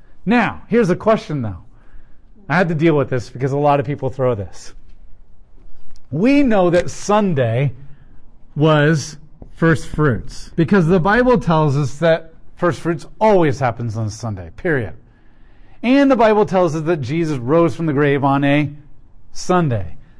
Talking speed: 155 wpm